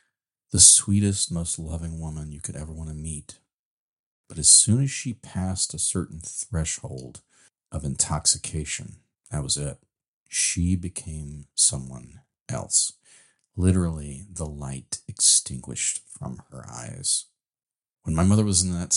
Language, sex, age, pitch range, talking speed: English, male, 40-59, 75-100 Hz, 135 wpm